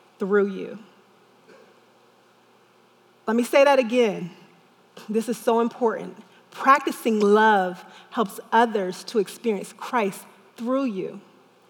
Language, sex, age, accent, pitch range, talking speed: English, female, 30-49, American, 200-255 Hz, 105 wpm